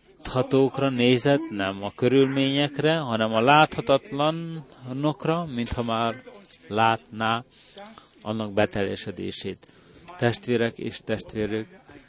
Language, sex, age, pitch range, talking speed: Hungarian, male, 30-49, 115-160 Hz, 80 wpm